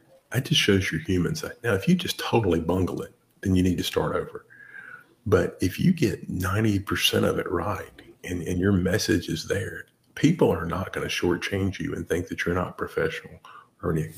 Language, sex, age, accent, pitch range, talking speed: English, male, 40-59, American, 85-100 Hz, 210 wpm